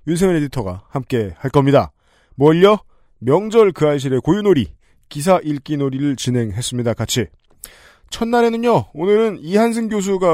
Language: Korean